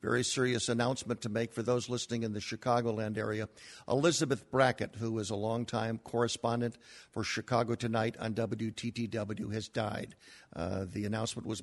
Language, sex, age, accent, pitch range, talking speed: English, male, 50-69, American, 105-120 Hz, 155 wpm